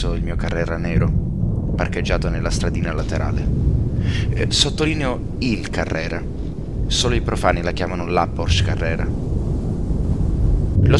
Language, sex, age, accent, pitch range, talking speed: Italian, male, 30-49, native, 85-105 Hz, 110 wpm